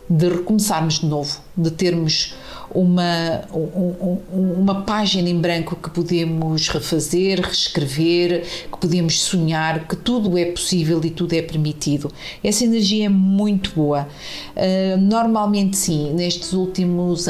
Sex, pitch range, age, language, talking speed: female, 160-185 Hz, 50-69, Portuguese, 125 wpm